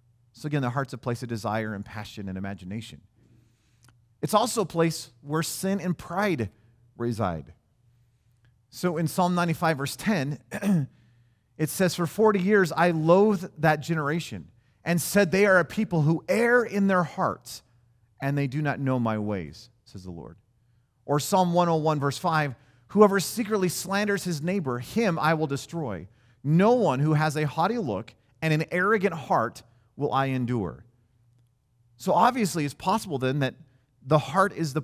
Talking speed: 165 wpm